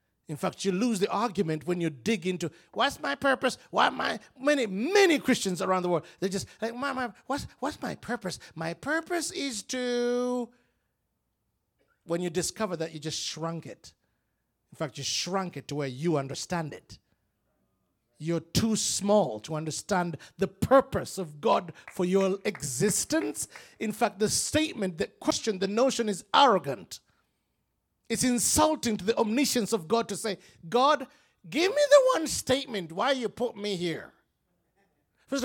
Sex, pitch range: male, 160-235 Hz